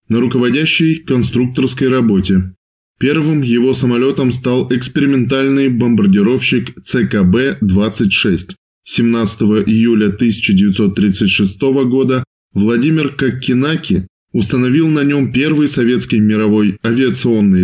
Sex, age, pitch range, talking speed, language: male, 20-39, 105-135 Hz, 80 wpm, Russian